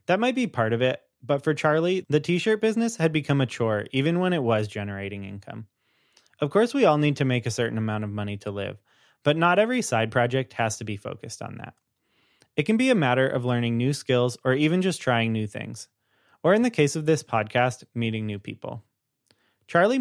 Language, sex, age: English, male, 20-39